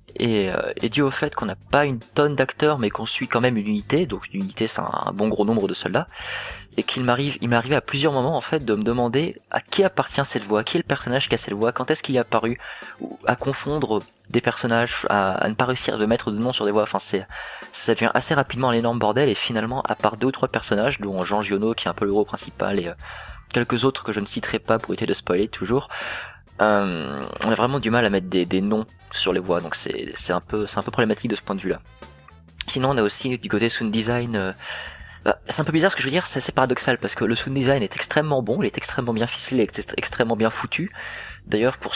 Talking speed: 270 wpm